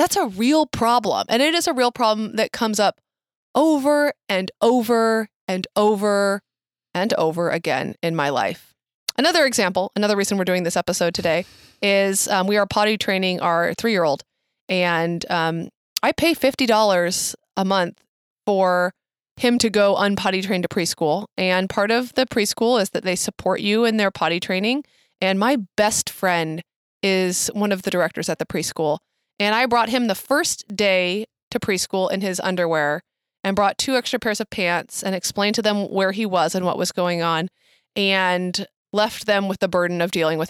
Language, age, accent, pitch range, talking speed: English, 20-39, American, 180-220 Hz, 180 wpm